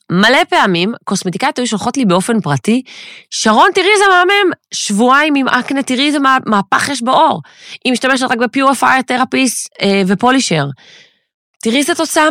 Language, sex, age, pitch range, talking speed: Hebrew, female, 20-39, 175-250 Hz, 150 wpm